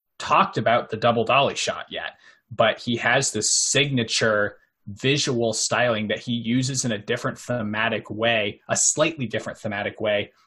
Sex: male